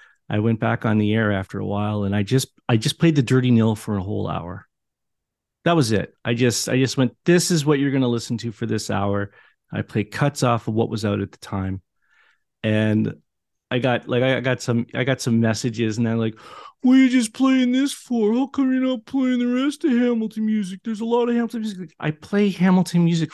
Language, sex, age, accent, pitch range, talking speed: English, male, 40-59, American, 115-195 Hz, 240 wpm